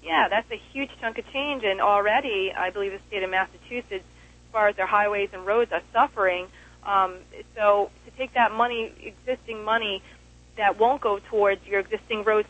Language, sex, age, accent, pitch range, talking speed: English, female, 30-49, American, 195-245 Hz, 185 wpm